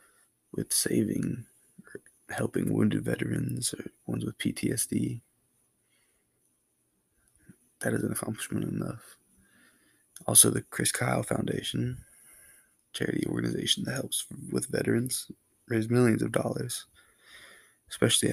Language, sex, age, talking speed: English, male, 20-39, 105 wpm